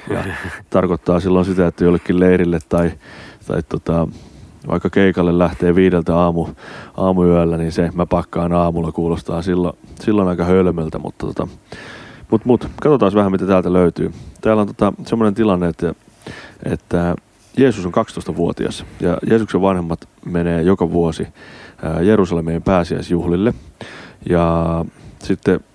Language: Finnish